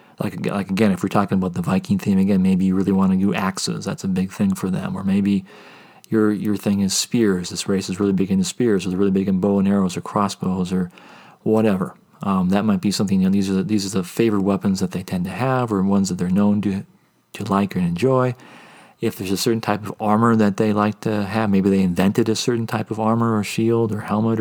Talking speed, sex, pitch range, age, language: 255 wpm, male, 100-125 Hz, 40-59, English